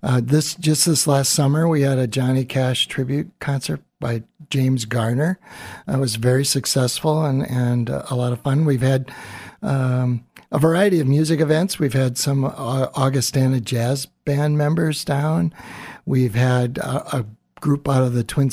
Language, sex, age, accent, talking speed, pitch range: English, male, 60-79, American, 170 wpm, 120-145 Hz